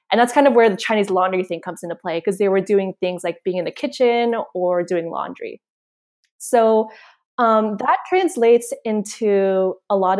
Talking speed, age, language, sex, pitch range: 190 wpm, 20-39, English, female, 185-235 Hz